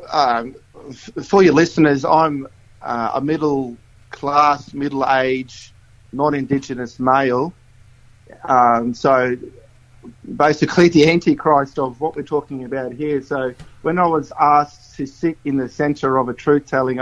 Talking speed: 135 wpm